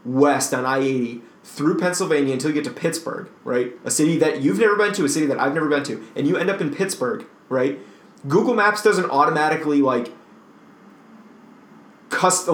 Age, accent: 30-49, American